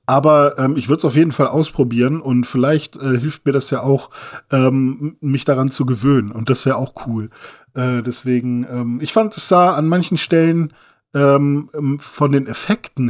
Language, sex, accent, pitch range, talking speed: German, male, German, 120-140 Hz, 190 wpm